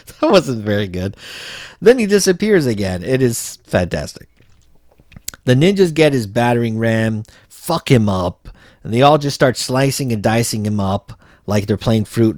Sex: male